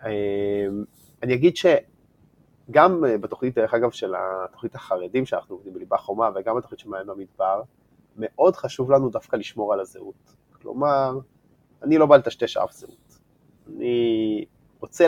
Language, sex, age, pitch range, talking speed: Hebrew, male, 30-49, 110-145 Hz, 130 wpm